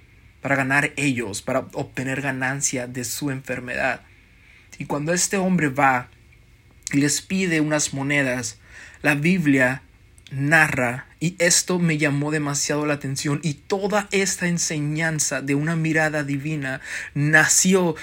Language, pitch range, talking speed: Spanish, 130-160 Hz, 125 wpm